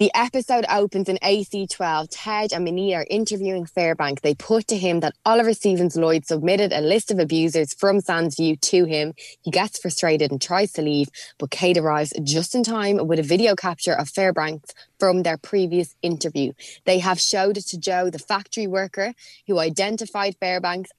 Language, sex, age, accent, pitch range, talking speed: English, female, 20-39, Irish, 165-200 Hz, 180 wpm